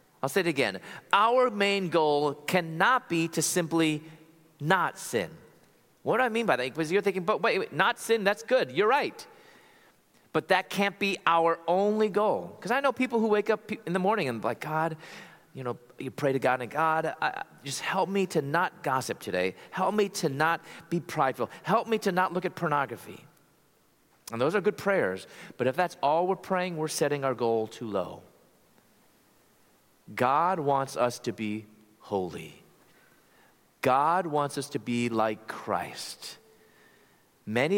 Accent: American